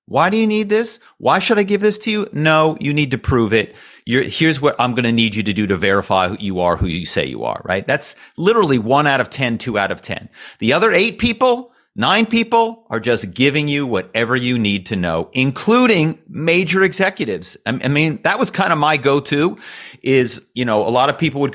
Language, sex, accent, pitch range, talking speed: English, male, American, 105-155 Hz, 230 wpm